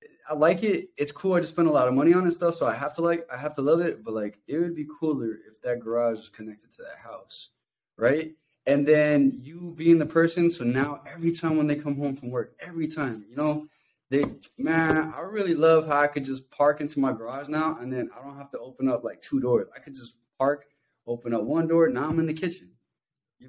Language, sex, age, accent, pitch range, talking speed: English, male, 20-39, American, 130-160 Hz, 255 wpm